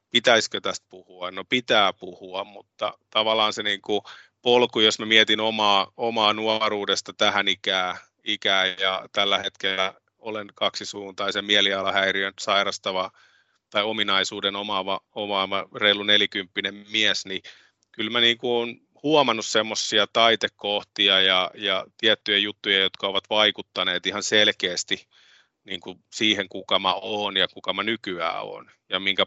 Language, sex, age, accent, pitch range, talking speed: Finnish, male, 30-49, native, 95-105 Hz, 125 wpm